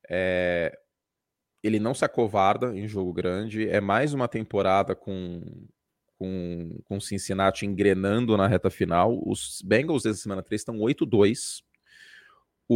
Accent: Brazilian